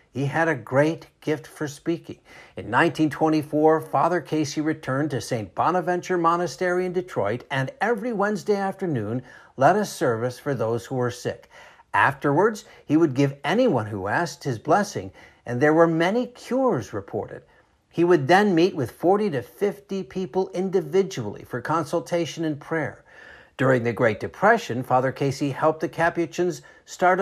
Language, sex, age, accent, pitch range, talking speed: English, male, 60-79, American, 130-185 Hz, 150 wpm